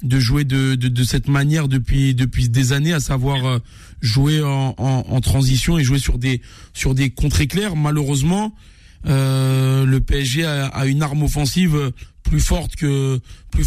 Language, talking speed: French, 170 wpm